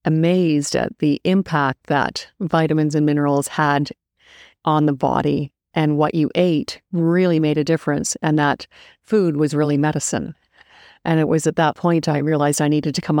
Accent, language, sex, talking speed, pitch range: American, English, female, 175 wpm, 150-175 Hz